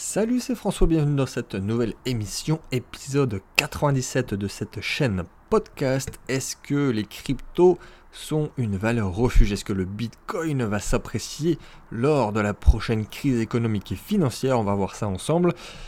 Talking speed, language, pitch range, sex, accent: 155 wpm, French, 100-140 Hz, male, French